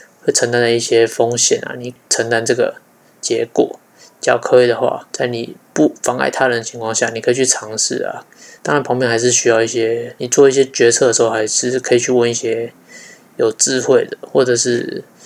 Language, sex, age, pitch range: Chinese, male, 20-39, 120-145 Hz